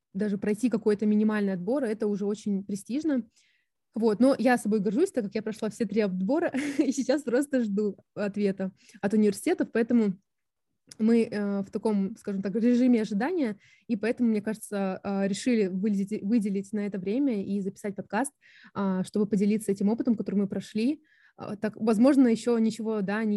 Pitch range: 200-230 Hz